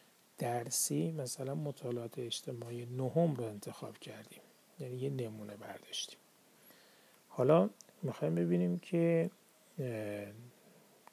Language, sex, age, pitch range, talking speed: Persian, male, 40-59, 115-140 Hz, 85 wpm